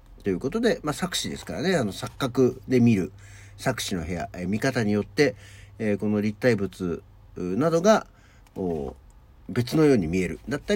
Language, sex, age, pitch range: Japanese, male, 60-79, 100-125 Hz